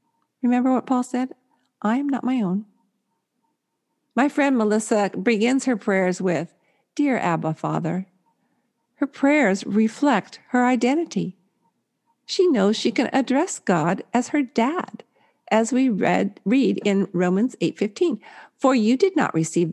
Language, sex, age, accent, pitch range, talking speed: English, female, 50-69, American, 185-250 Hz, 135 wpm